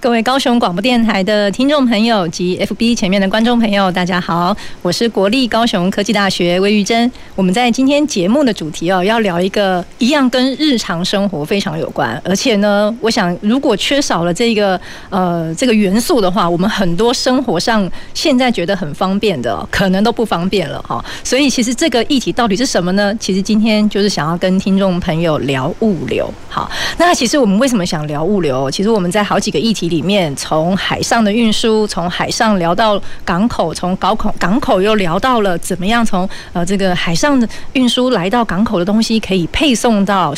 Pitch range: 185-235 Hz